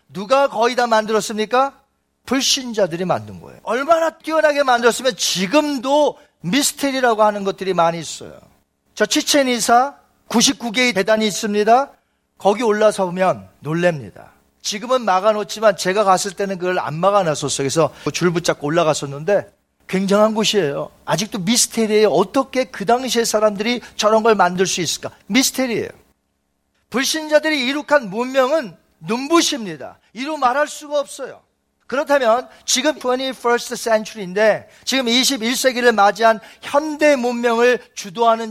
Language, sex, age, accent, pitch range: Korean, male, 40-59, native, 185-265 Hz